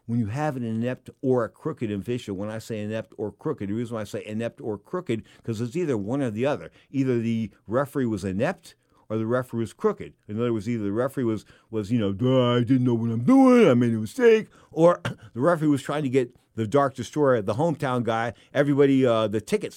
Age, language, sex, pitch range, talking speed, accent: 50-69, English, male, 105-130 Hz, 235 wpm, American